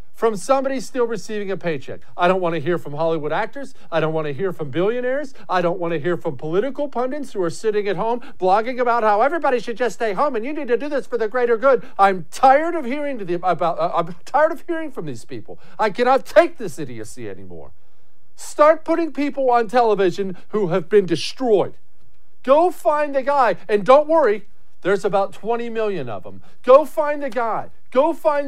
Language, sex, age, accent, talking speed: English, male, 50-69, American, 200 wpm